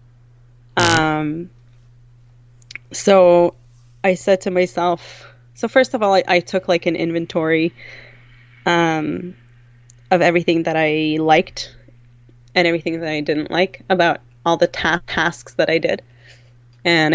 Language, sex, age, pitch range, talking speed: English, female, 20-39, 120-180 Hz, 130 wpm